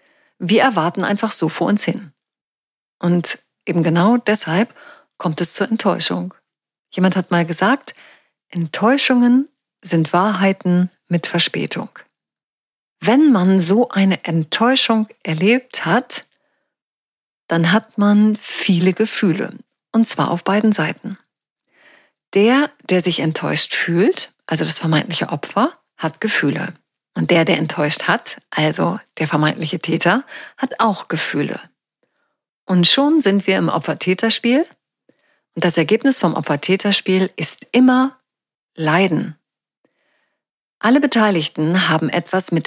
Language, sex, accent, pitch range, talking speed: German, female, German, 165-220 Hz, 115 wpm